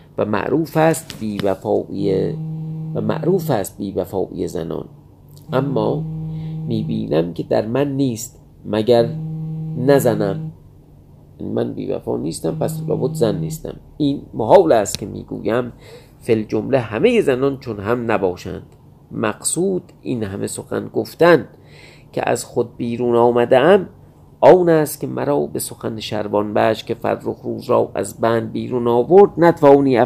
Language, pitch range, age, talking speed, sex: Persian, 105-155 Hz, 40-59, 125 wpm, male